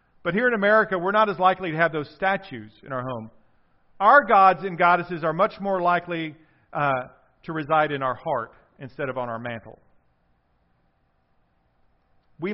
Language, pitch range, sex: English, 145-205 Hz, male